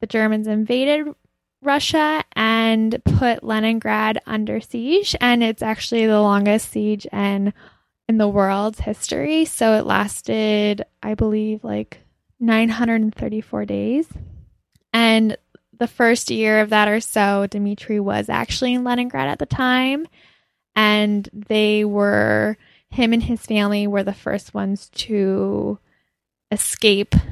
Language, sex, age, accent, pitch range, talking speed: English, female, 10-29, American, 205-230 Hz, 125 wpm